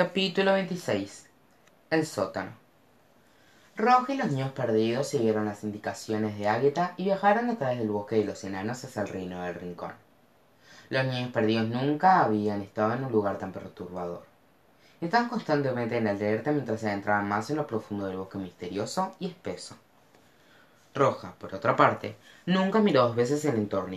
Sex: female